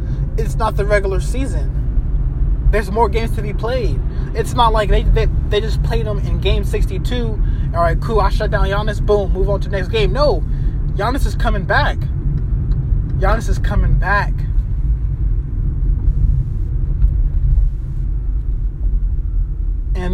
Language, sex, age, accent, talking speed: English, male, 20-39, American, 140 wpm